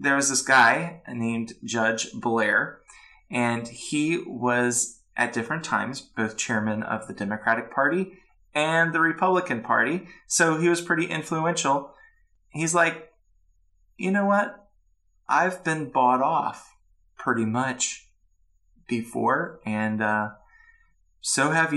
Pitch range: 105-155 Hz